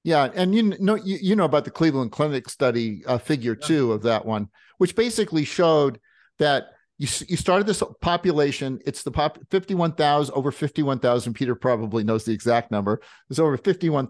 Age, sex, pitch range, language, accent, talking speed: 50-69, male, 120-165 Hz, English, American, 195 wpm